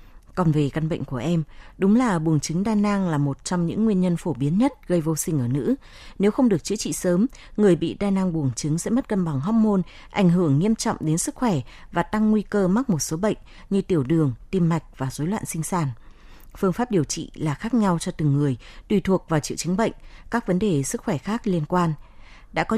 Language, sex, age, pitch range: Vietnamese, female, 20-39, 155-205 Hz